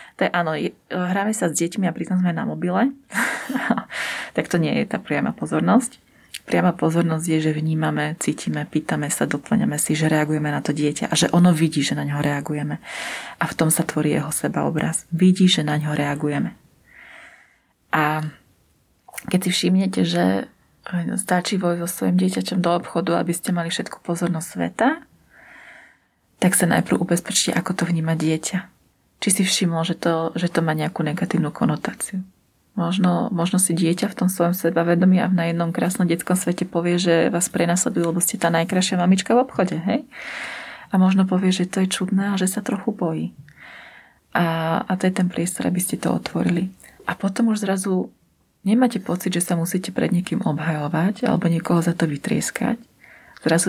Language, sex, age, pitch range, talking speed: Slovak, female, 30-49, 165-190 Hz, 175 wpm